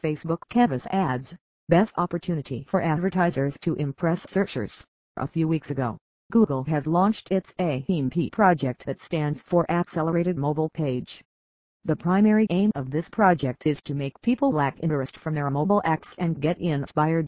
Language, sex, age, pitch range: English, female, 40-59, 140-185 Hz